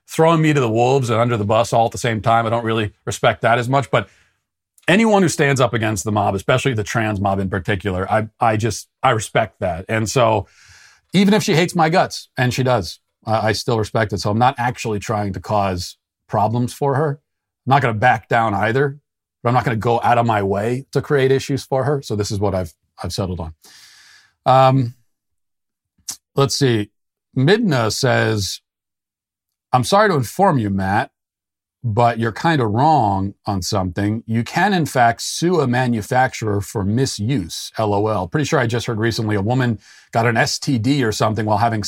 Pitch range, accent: 100-130 Hz, American